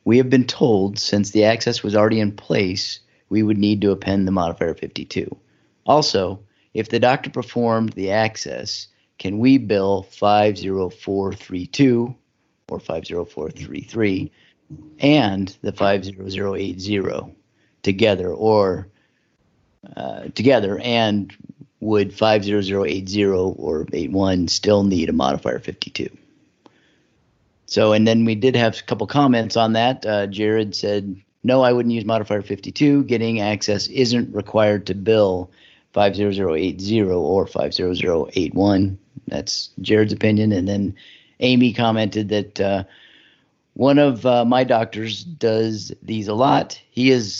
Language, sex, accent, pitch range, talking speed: English, male, American, 100-115 Hz, 135 wpm